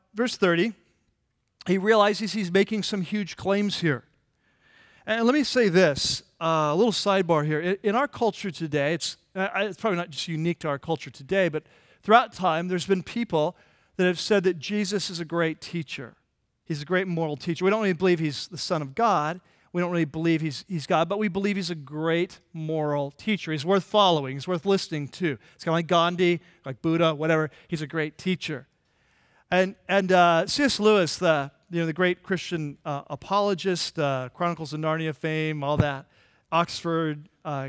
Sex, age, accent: male, 40-59, American